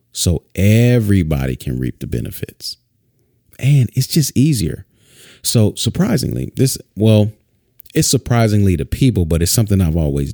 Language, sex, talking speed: English, male, 135 wpm